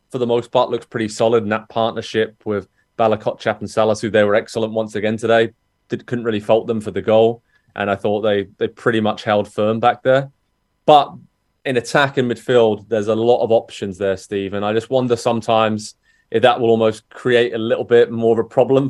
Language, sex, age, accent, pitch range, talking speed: English, male, 20-39, British, 105-120 Hz, 215 wpm